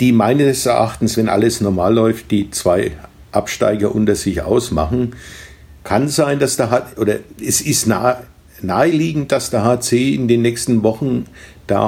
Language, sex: German, male